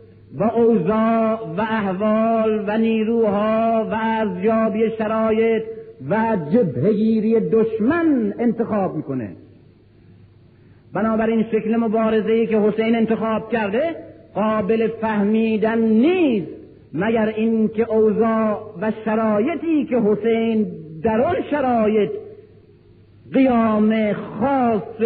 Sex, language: male, Persian